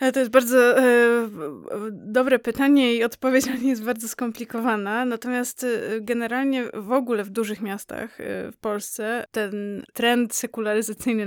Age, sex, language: 20-39, female, Polish